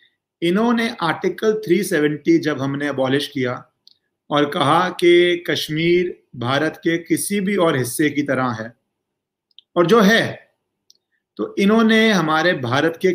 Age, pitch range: 30-49, 145-180 Hz